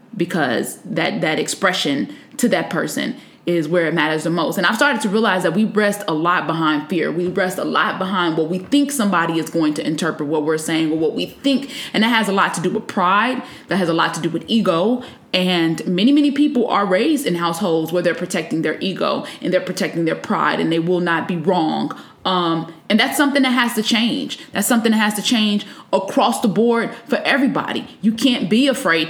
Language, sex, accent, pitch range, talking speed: English, female, American, 180-255 Hz, 225 wpm